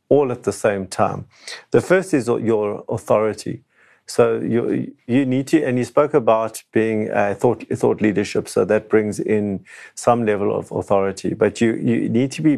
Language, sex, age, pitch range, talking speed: English, male, 50-69, 100-115 Hz, 180 wpm